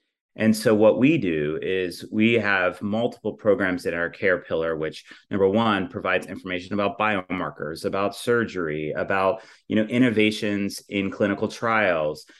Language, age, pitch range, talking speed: English, 30-49, 90-110 Hz, 145 wpm